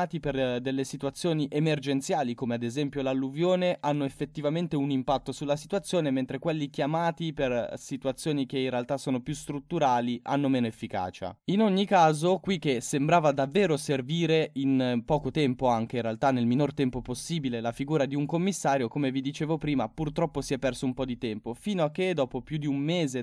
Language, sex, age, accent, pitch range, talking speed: Italian, male, 10-29, native, 125-155 Hz, 185 wpm